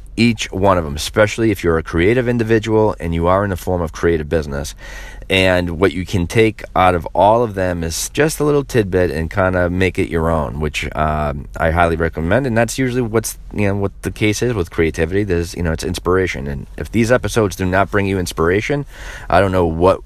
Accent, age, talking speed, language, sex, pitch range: American, 30-49, 225 wpm, English, male, 80-100 Hz